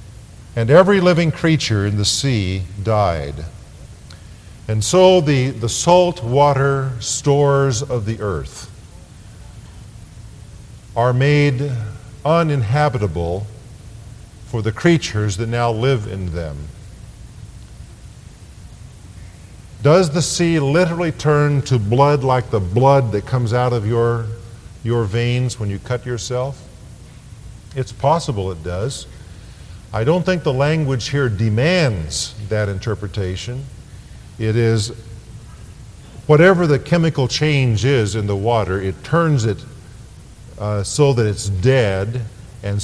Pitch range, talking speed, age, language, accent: 105-135 Hz, 115 wpm, 50-69, English, American